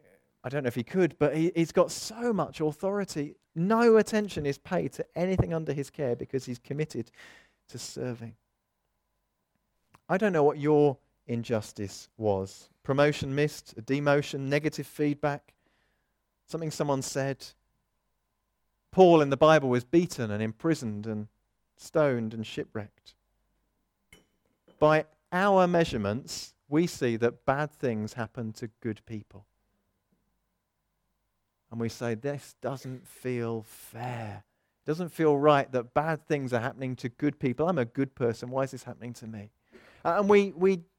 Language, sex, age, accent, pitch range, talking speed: English, male, 40-59, British, 115-150 Hz, 145 wpm